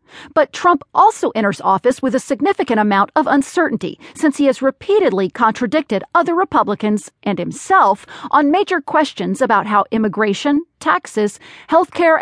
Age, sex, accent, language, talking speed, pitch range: 40-59, female, American, English, 140 wpm, 205-300 Hz